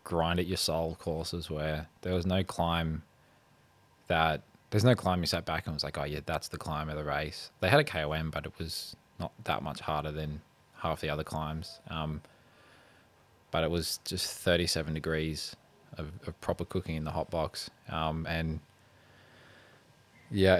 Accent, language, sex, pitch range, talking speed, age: Australian, English, male, 80-90 Hz, 185 wpm, 20-39